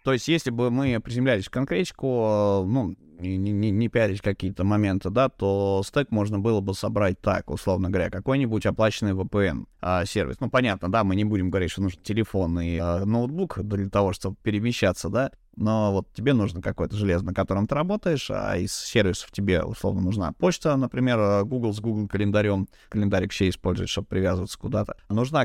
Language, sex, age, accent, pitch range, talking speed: Russian, male, 20-39, native, 95-115 Hz, 170 wpm